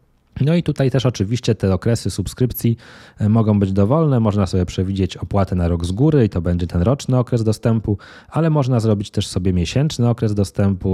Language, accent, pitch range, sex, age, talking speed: Polish, native, 95-120 Hz, male, 20-39, 185 wpm